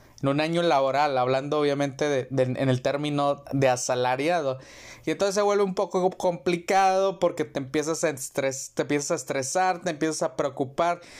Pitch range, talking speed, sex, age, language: 135-165 Hz, 175 wpm, male, 30-49, Spanish